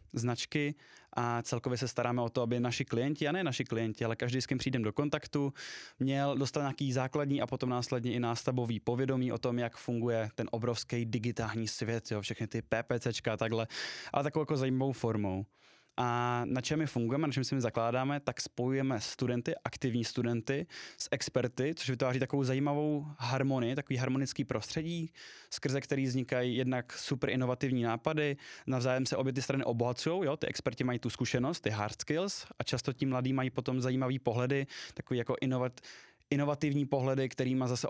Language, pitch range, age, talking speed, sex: Czech, 115-135 Hz, 20-39, 175 wpm, male